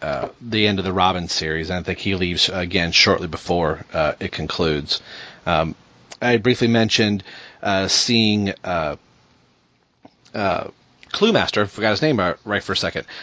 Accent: American